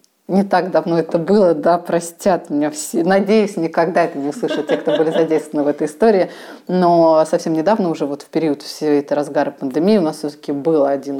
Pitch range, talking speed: 145-190 Hz, 200 wpm